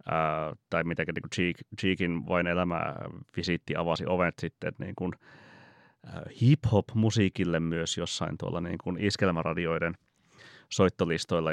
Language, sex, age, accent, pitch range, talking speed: Finnish, male, 30-49, native, 85-105 Hz, 110 wpm